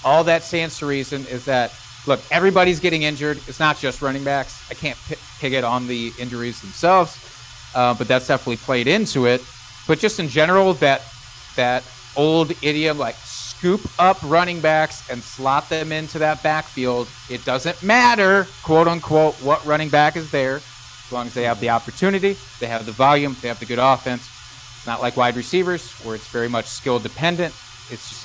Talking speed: 190 wpm